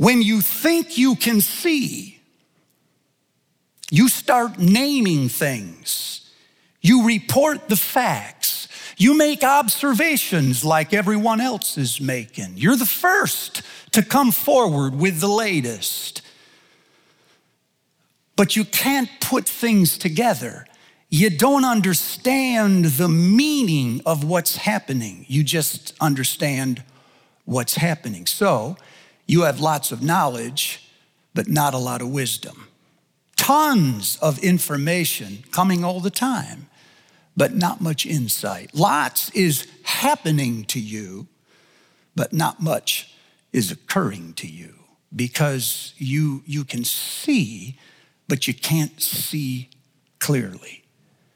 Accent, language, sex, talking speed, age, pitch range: American, English, male, 110 wpm, 50-69, 140-220 Hz